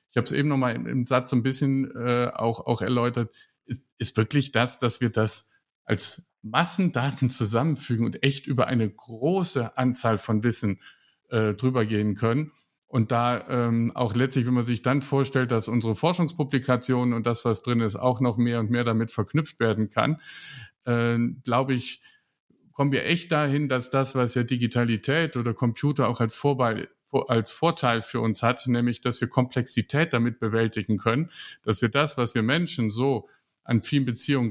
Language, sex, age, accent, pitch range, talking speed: German, male, 50-69, German, 115-135 Hz, 180 wpm